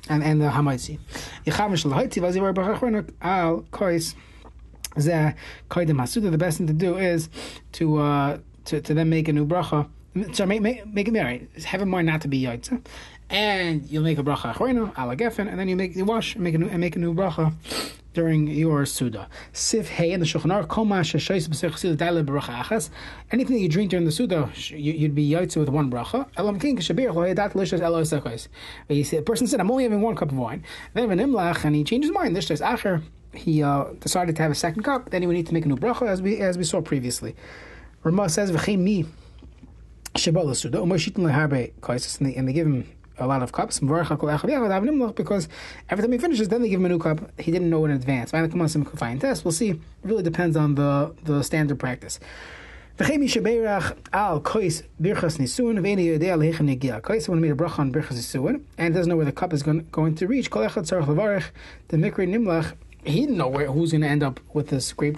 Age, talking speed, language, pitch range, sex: 30-49, 155 wpm, English, 150-195 Hz, male